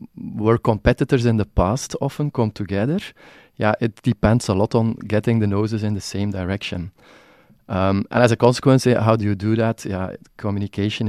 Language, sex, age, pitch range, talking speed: English, male, 30-49, 105-120 Hz, 180 wpm